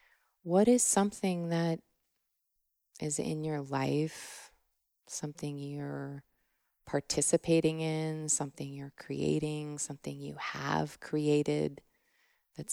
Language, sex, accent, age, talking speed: English, female, American, 20-39, 95 wpm